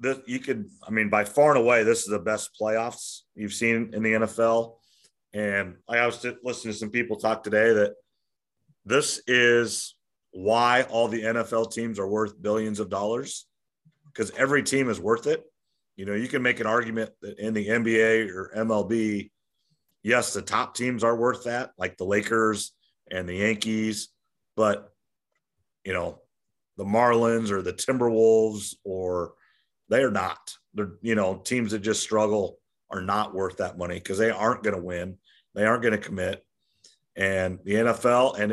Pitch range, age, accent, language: 105-120 Hz, 40-59, American, English